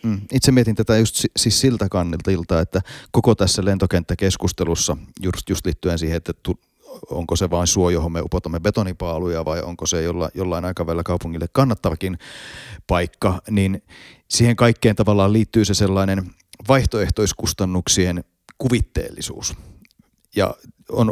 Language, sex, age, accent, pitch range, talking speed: Finnish, male, 30-49, native, 85-105 Hz, 120 wpm